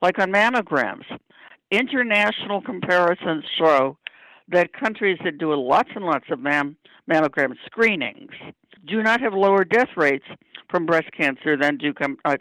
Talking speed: 135 wpm